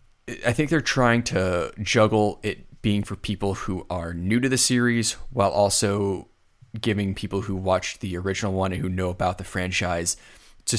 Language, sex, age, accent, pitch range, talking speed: English, male, 20-39, American, 90-115 Hz, 180 wpm